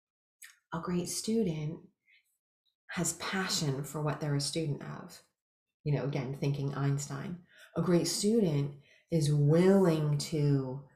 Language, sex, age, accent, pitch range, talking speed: English, female, 30-49, American, 150-185 Hz, 120 wpm